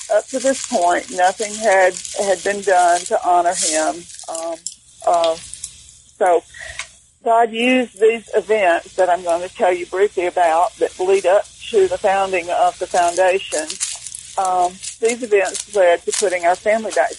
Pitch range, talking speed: 180-260 Hz, 155 wpm